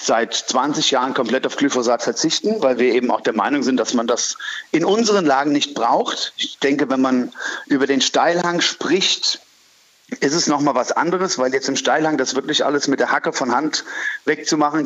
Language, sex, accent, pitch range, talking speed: German, male, German, 135-160 Hz, 200 wpm